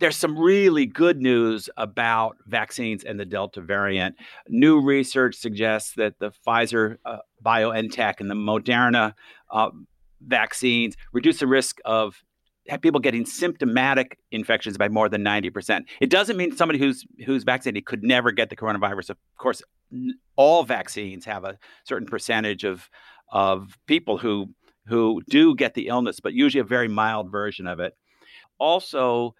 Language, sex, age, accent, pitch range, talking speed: English, male, 50-69, American, 105-145 Hz, 150 wpm